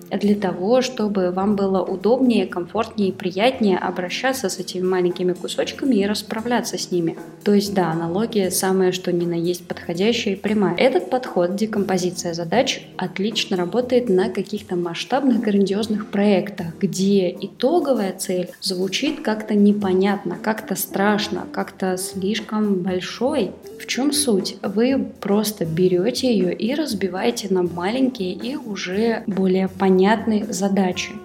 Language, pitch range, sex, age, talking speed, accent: Russian, 190-235 Hz, female, 20-39, 130 wpm, native